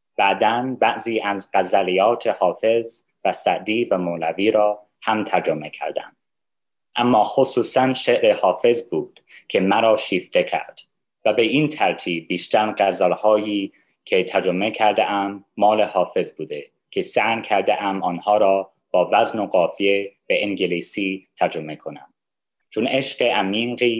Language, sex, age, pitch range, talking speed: Persian, male, 30-49, 100-135 Hz, 130 wpm